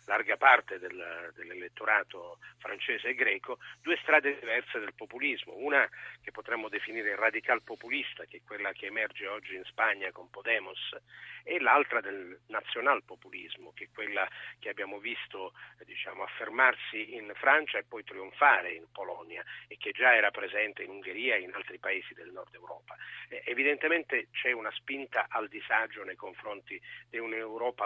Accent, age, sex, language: native, 40-59, male, Italian